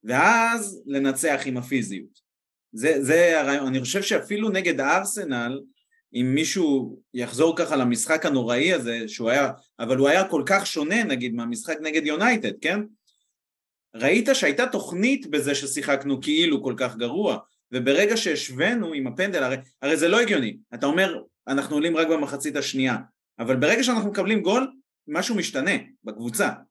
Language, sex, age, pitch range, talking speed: Hebrew, male, 30-49, 130-210 Hz, 140 wpm